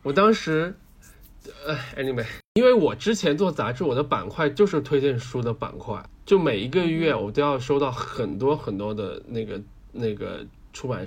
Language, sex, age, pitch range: Chinese, male, 20-39, 115-155 Hz